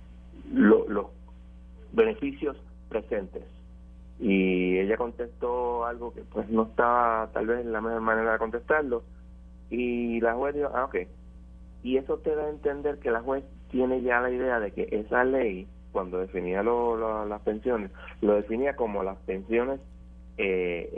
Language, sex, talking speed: Spanish, male, 150 wpm